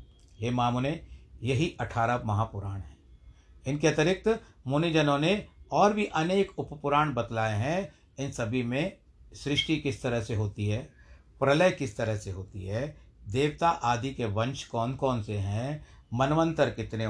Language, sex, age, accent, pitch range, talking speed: Hindi, male, 60-79, native, 100-140 Hz, 145 wpm